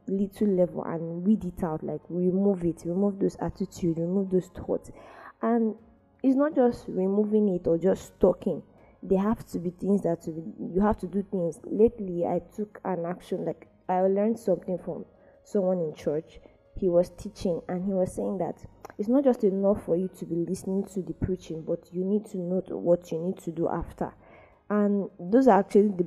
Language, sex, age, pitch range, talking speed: English, female, 20-39, 170-205 Hz, 195 wpm